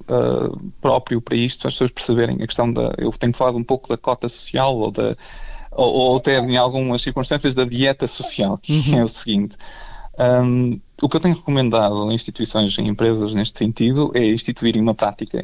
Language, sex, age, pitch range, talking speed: Portuguese, male, 20-39, 110-135 Hz, 200 wpm